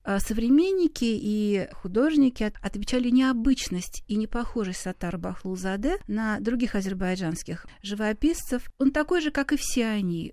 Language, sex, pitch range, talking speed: Russian, female, 190-240 Hz, 115 wpm